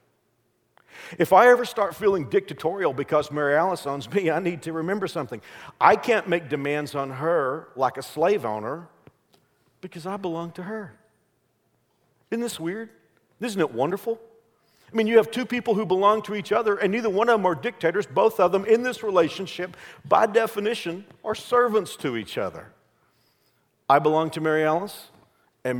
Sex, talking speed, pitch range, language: male, 170 wpm, 130-195 Hz, English